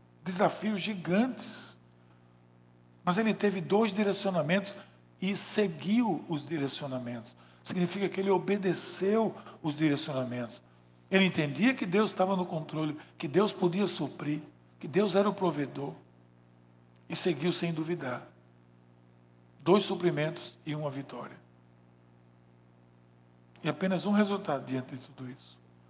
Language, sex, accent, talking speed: Portuguese, male, Brazilian, 115 wpm